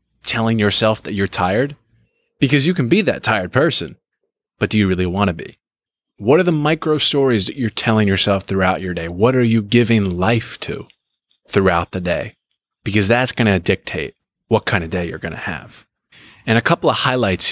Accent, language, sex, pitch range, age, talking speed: American, English, male, 95-115 Hz, 20-39, 200 wpm